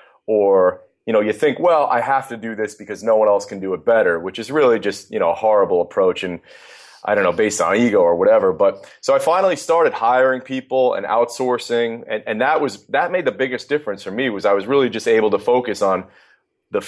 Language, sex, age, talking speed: English, male, 30-49, 240 wpm